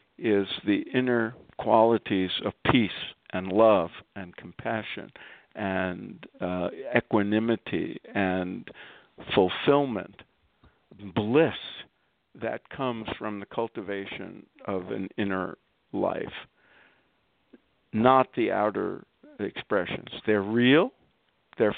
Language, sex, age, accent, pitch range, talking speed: English, male, 50-69, American, 100-130 Hz, 90 wpm